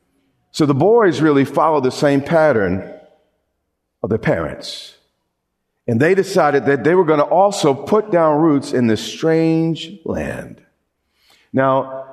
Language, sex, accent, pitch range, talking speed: English, male, American, 125-180 Hz, 140 wpm